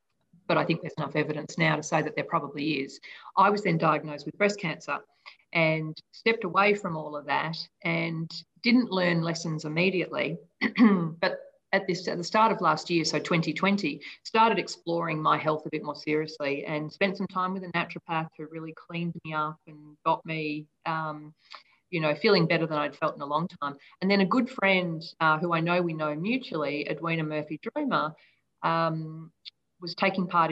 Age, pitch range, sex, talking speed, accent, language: 40-59, 155-190 Hz, female, 190 wpm, Australian, English